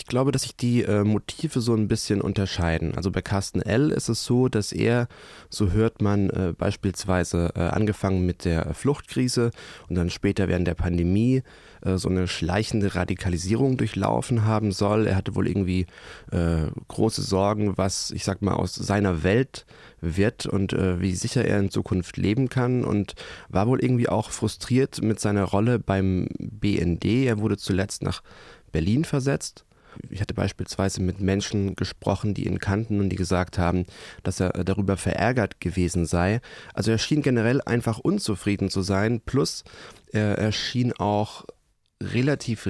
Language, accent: German, German